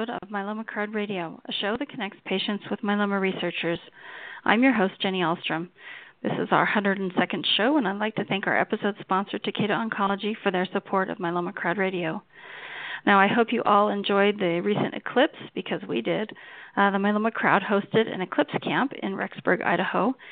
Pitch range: 185-220 Hz